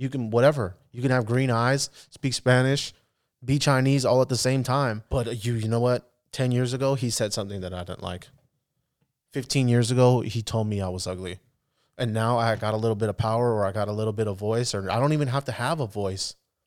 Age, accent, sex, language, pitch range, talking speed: 20-39, American, male, English, 105-125 Hz, 240 wpm